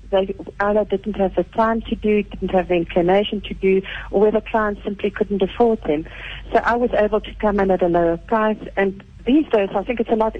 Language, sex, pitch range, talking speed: English, female, 190-225 Hz, 225 wpm